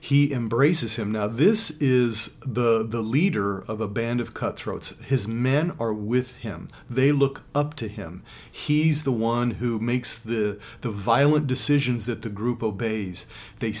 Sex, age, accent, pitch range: male, 40-59, American, 110-135 Hz